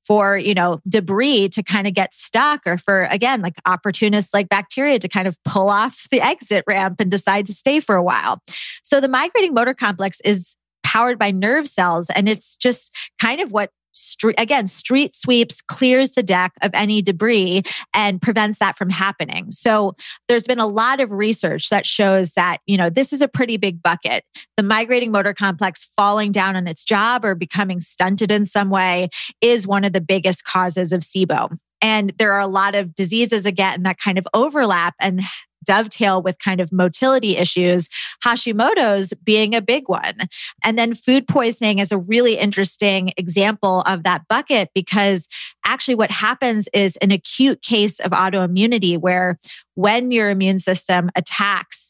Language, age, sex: English, 30-49, female